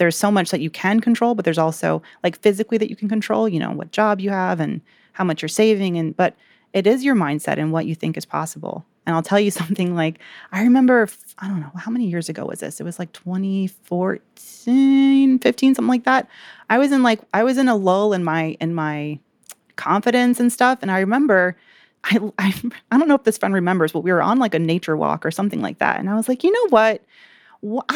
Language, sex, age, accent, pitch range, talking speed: English, female, 30-49, American, 185-270 Hz, 240 wpm